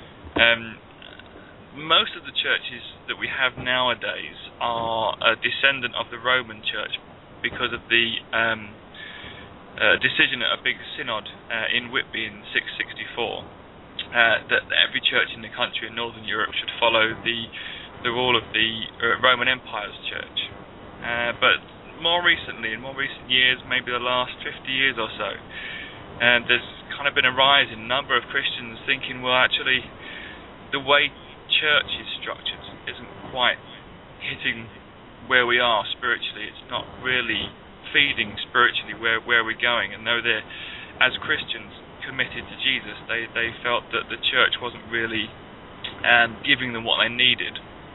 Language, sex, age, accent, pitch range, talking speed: English, male, 20-39, British, 110-125 Hz, 155 wpm